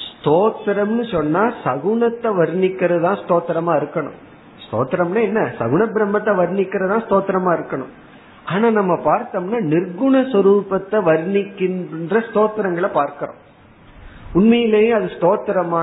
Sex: male